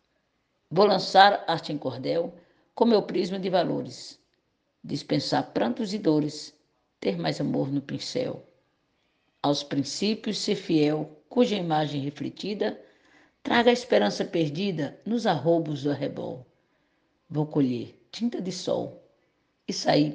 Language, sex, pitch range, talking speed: Portuguese, female, 160-210 Hz, 120 wpm